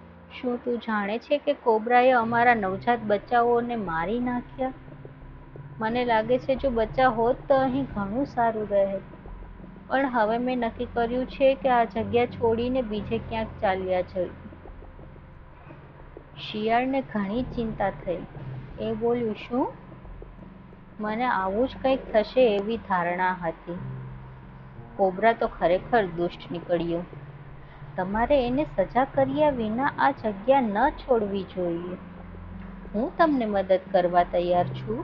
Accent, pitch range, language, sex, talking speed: native, 175-245 Hz, Gujarati, female, 35 wpm